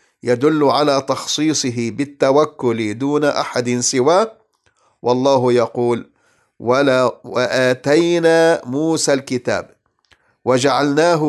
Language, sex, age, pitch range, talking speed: English, male, 50-69, 120-155 Hz, 75 wpm